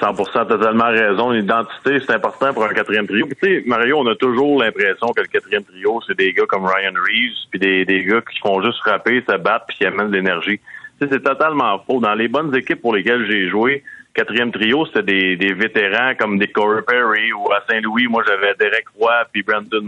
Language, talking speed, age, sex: French, 225 wpm, 30-49, male